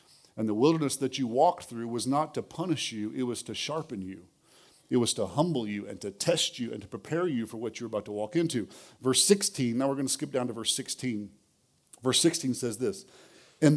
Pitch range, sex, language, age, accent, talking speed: 120-155 Hz, male, English, 40-59, American, 230 wpm